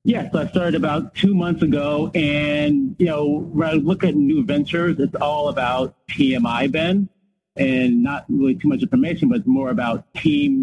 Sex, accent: male, American